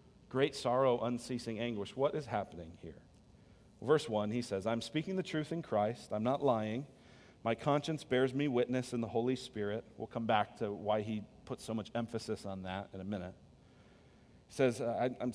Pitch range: 115-160 Hz